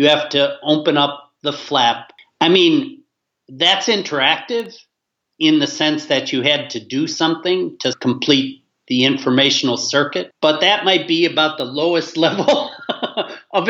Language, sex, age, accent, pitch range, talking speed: English, male, 40-59, American, 135-170 Hz, 150 wpm